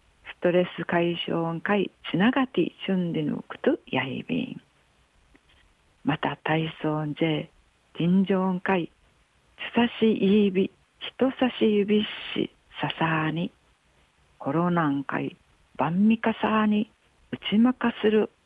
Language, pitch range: Japanese, 150-210 Hz